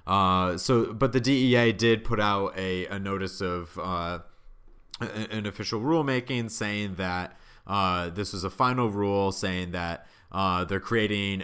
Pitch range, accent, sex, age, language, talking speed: 95-115 Hz, American, male, 30-49, English, 150 wpm